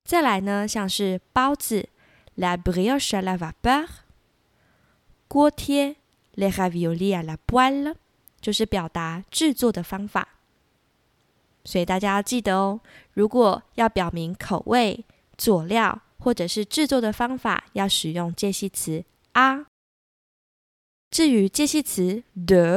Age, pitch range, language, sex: 20-39, 185-245 Hz, Chinese, female